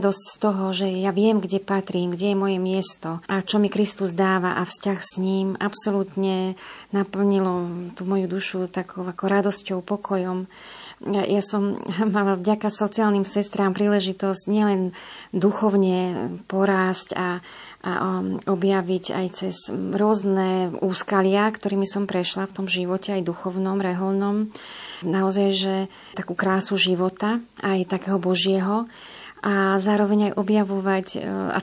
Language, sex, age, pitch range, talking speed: Slovak, female, 30-49, 190-205 Hz, 135 wpm